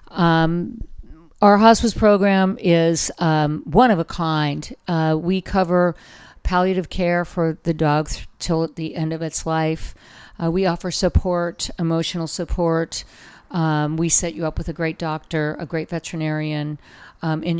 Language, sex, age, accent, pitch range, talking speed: English, female, 50-69, American, 160-180 Hz, 155 wpm